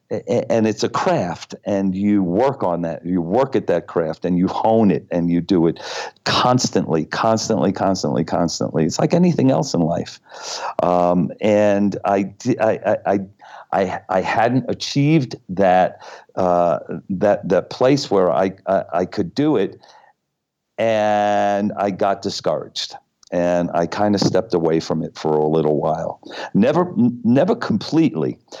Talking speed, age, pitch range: 150 wpm, 50-69, 85-105 Hz